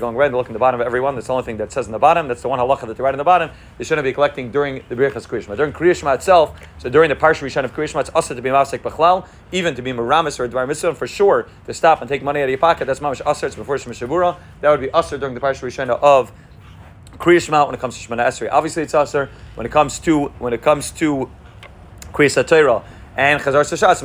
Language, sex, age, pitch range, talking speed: English, male, 30-49, 120-150 Hz, 265 wpm